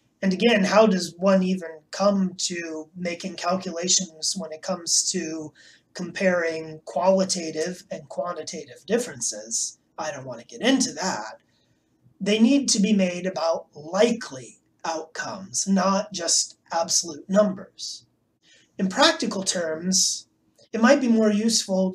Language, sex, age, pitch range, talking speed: English, male, 30-49, 170-215 Hz, 125 wpm